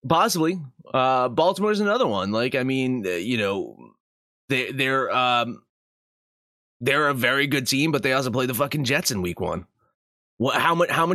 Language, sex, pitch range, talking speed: English, male, 110-160 Hz, 185 wpm